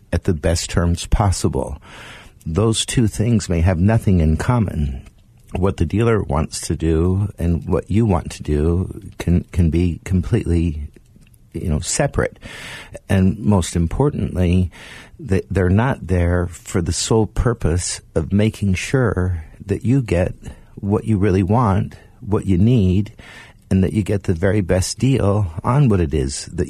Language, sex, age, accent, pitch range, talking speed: English, male, 50-69, American, 85-110 Hz, 155 wpm